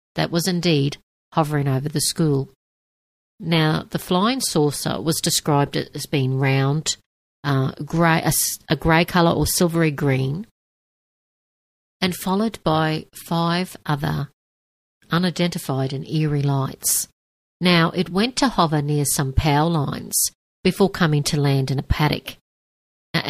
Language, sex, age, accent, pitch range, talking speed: English, female, 50-69, Australian, 140-170 Hz, 130 wpm